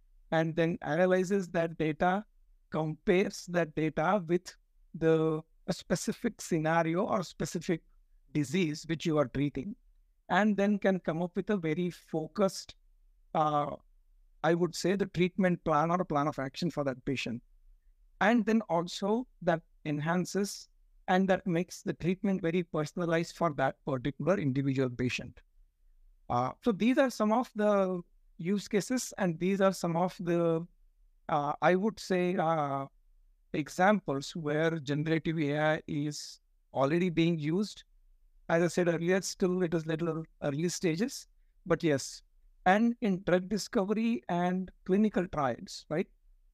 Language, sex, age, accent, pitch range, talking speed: English, male, 60-79, Indian, 155-190 Hz, 140 wpm